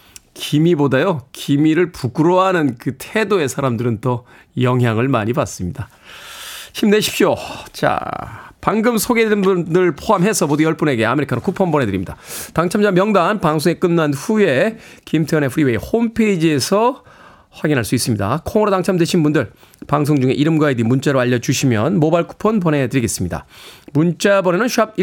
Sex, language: male, Korean